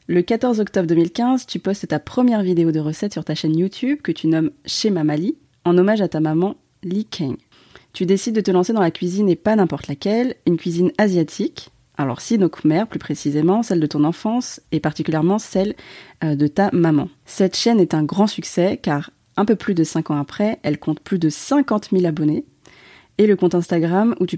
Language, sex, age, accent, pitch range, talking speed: French, female, 30-49, French, 160-205 Hz, 205 wpm